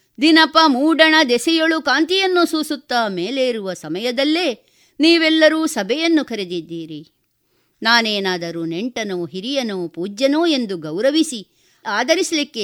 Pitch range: 175-280 Hz